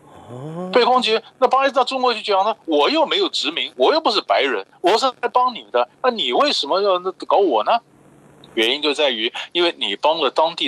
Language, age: Chinese, 50-69